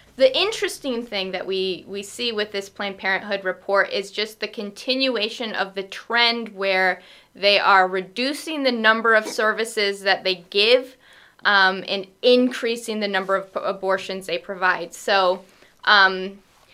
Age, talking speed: 20-39, 145 wpm